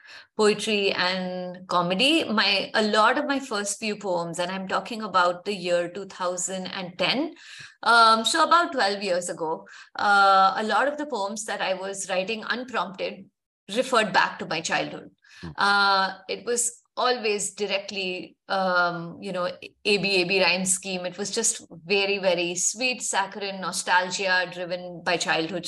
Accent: Indian